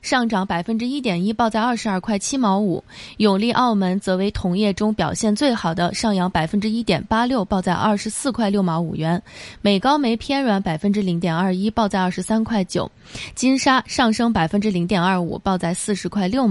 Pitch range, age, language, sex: 180-230 Hz, 20-39, Chinese, female